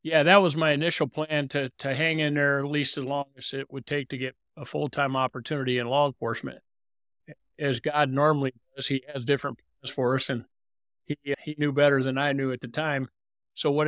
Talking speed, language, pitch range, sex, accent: 220 wpm, English, 130-150 Hz, male, American